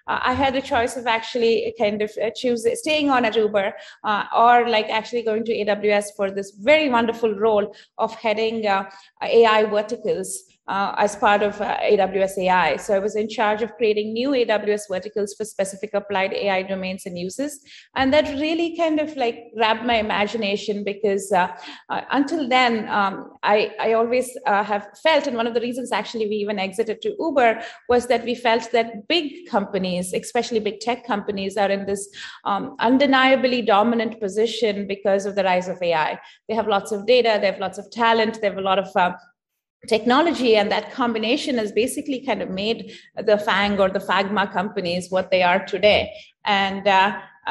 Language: English